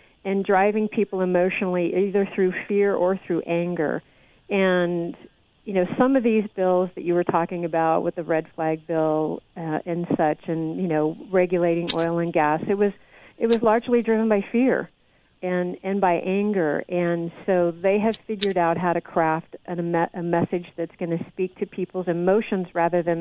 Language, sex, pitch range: English, female, 170-200 Hz